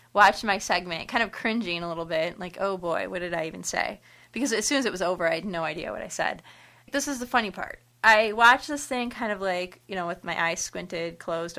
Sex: female